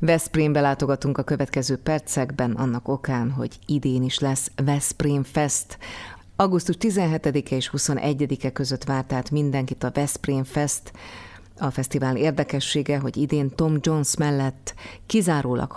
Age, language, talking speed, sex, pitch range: 30-49, Hungarian, 120 wpm, female, 130-145 Hz